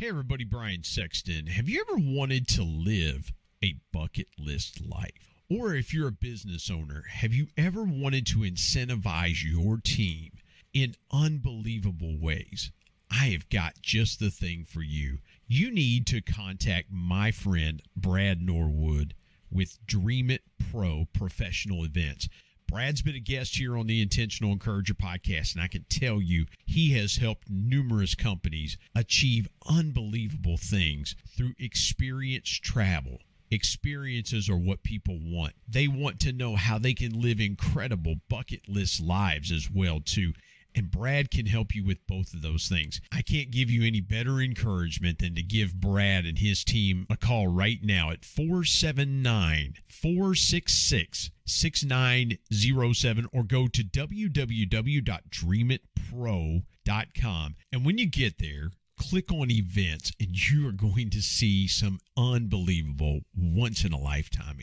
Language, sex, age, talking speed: English, male, 50-69, 140 wpm